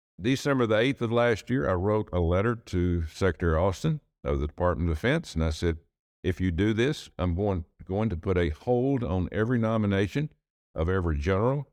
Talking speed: 195 wpm